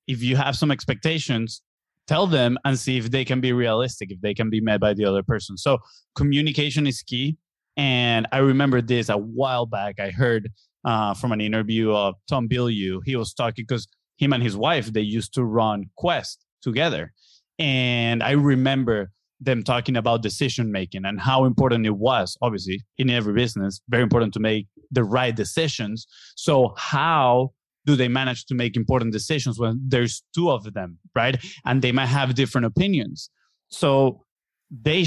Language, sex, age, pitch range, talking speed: English, male, 30-49, 115-135 Hz, 175 wpm